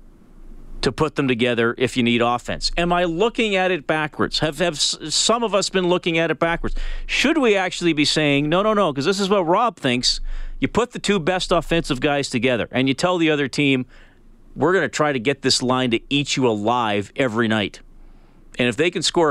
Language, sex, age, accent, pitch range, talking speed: English, male, 40-59, American, 125-170 Hz, 220 wpm